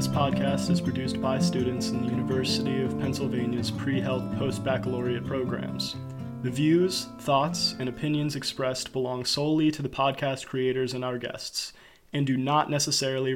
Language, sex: English, male